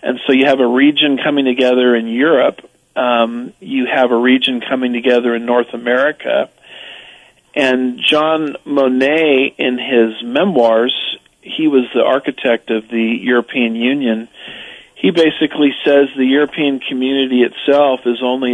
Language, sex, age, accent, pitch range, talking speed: English, male, 50-69, American, 120-135 Hz, 140 wpm